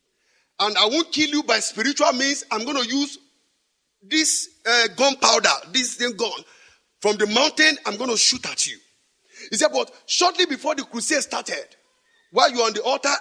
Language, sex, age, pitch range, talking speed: English, male, 50-69, 245-350 Hz, 185 wpm